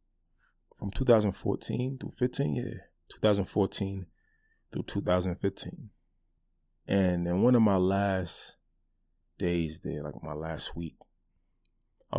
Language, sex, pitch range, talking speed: English, male, 80-95 Hz, 105 wpm